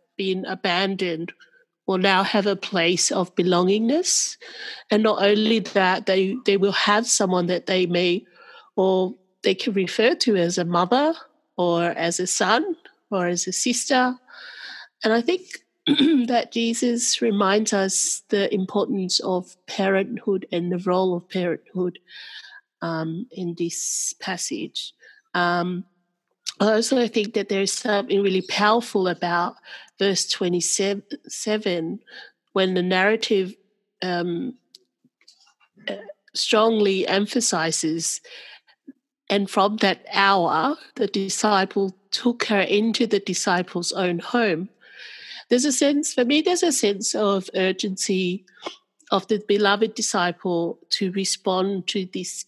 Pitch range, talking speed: 185-230 Hz, 125 wpm